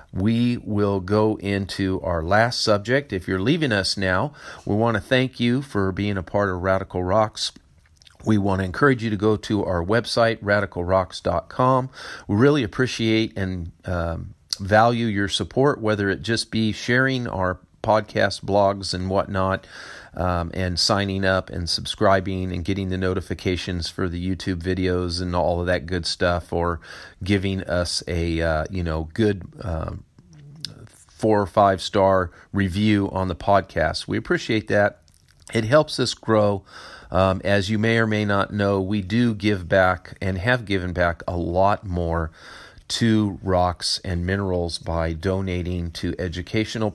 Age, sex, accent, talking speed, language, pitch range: 40-59, male, American, 160 wpm, English, 90-110 Hz